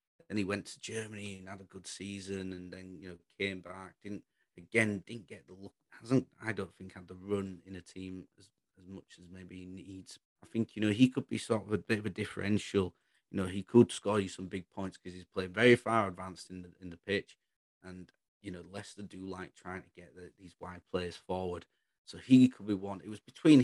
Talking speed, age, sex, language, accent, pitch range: 240 wpm, 30-49, male, English, British, 90-105 Hz